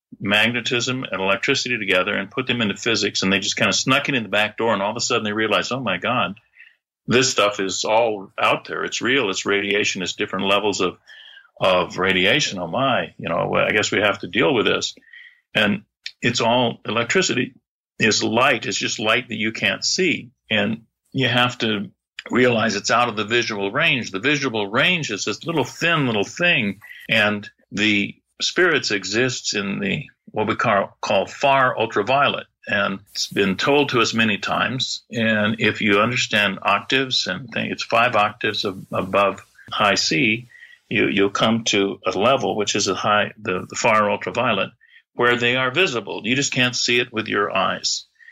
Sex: male